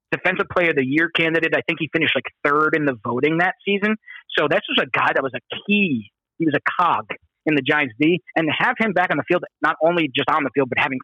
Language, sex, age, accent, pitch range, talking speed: English, male, 30-49, American, 140-170 Hz, 270 wpm